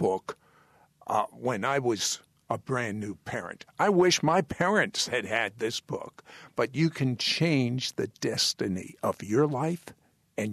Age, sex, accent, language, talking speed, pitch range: 60-79, male, American, English, 155 wpm, 125-165 Hz